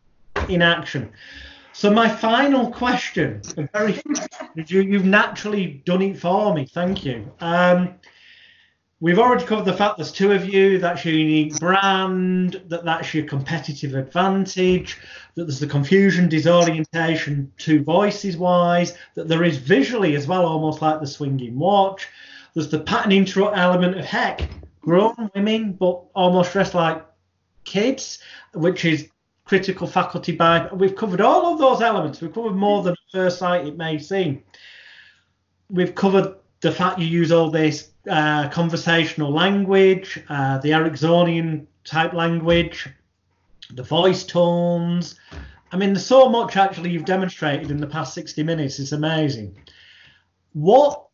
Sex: male